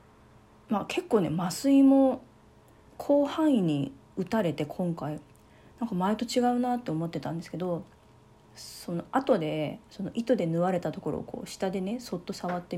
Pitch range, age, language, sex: 160-225 Hz, 40-59, Japanese, female